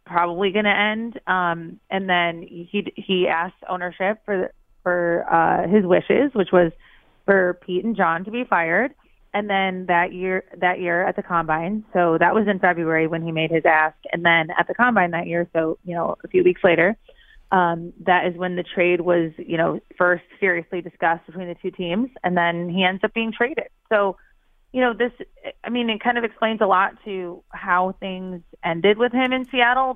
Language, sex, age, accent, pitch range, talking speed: English, female, 30-49, American, 170-205 Hz, 200 wpm